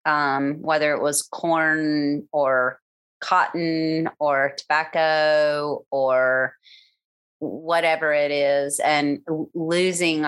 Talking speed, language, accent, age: 90 wpm, English, American, 30-49